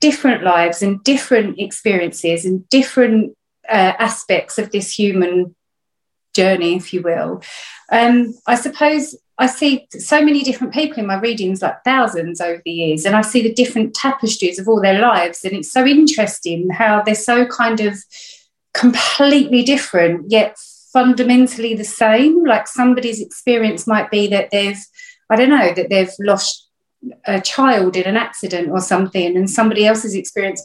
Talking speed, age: 160 wpm, 30-49